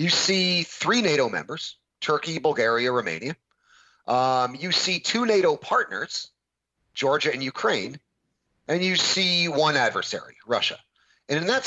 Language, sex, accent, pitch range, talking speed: English, male, American, 140-195 Hz, 135 wpm